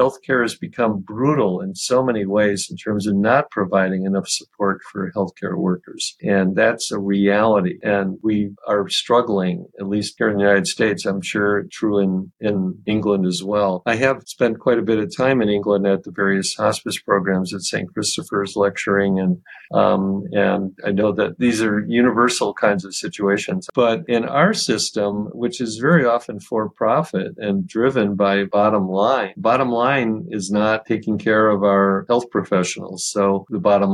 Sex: male